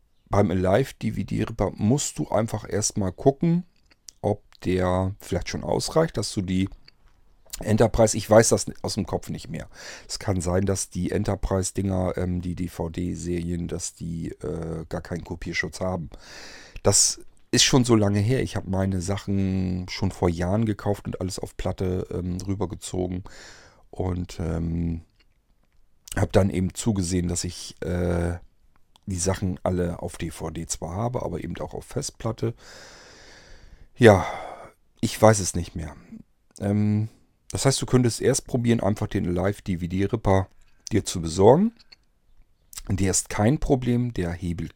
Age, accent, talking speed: 40-59, German, 145 wpm